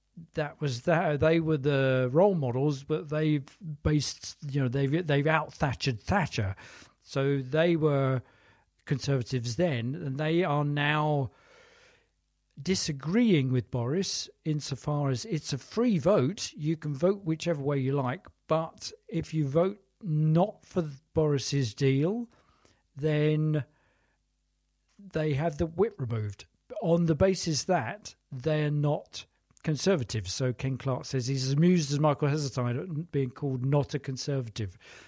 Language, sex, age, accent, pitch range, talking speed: English, male, 50-69, British, 125-155 Hz, 135 wpm